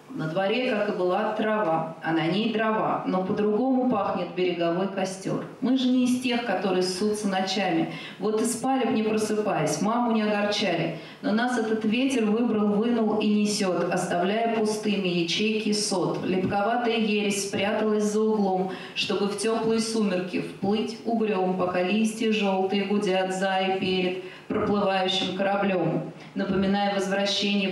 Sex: female